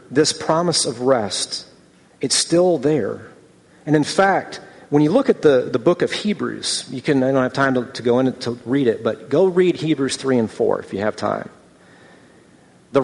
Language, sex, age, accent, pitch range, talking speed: English, male, 40-59, American, 120-160 Hz, 205 wpm